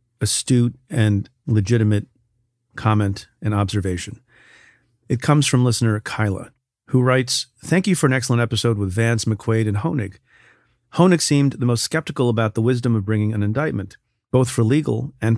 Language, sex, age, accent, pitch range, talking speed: English, male, 40-59, American, 110-130 Hz, 155 wpm